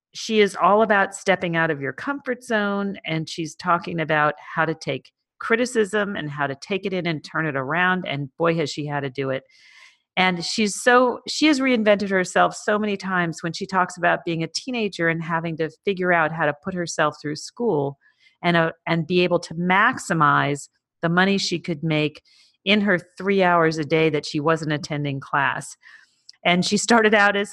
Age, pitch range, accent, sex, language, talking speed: 40-59, 160-210 Hz, American, female, English, 200 wpm